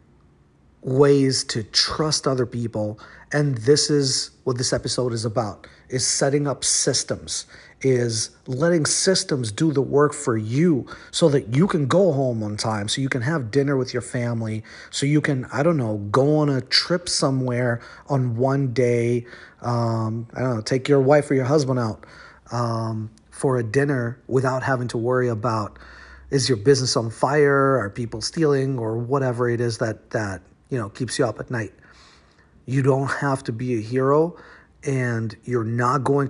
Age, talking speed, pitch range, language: 40-59, 175 wpm, 110-140 Hz, English